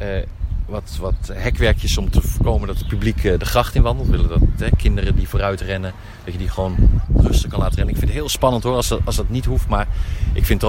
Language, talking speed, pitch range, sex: Dutch, 265 wpm, 85-105 Hz, male